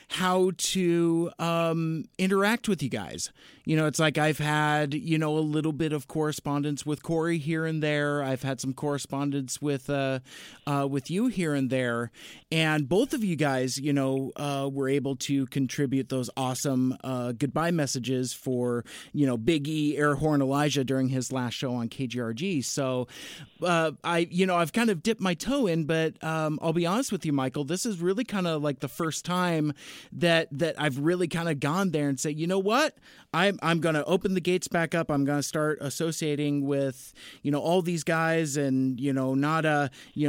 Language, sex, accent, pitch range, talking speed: English, male, American, 140-170 Hz, 200 wpm